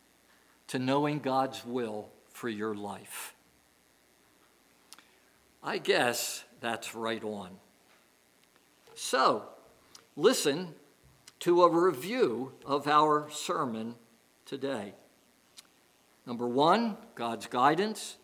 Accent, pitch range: American, 120-180 Hz